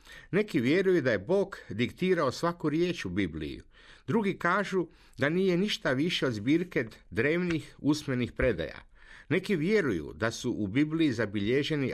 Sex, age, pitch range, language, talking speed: male, 50-69, 120-175 Hz, Croatian, 140 wpm